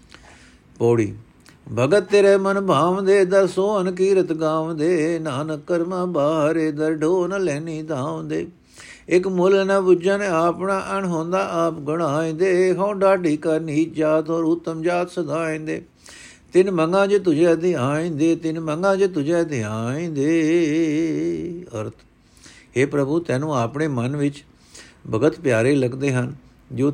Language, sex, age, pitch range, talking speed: Punjabi, male, 60-79, 125-165 Hz, 130 wpm